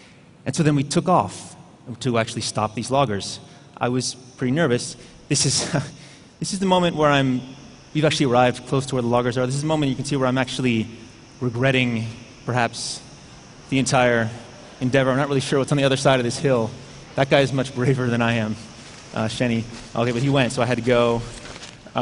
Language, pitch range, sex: Chinese, 115-135 Hz, male